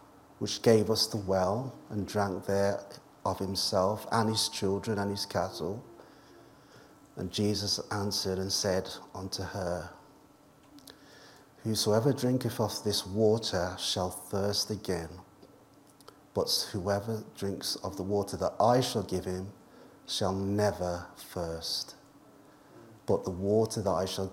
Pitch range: 95-115 Hz